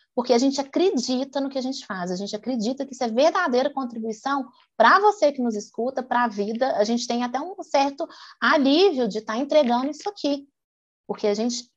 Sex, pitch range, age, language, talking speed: female, 210-280 Hz, 20-39, Portuguese, 205 wpm